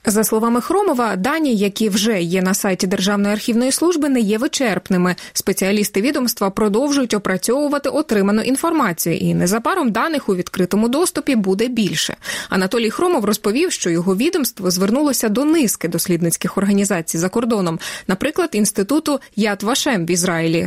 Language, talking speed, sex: Russian, 140 wpm, female